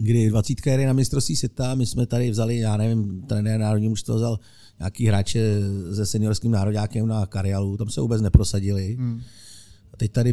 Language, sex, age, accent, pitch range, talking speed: Czech, male, 50-69, native, 105-120 Hz, 175 wpm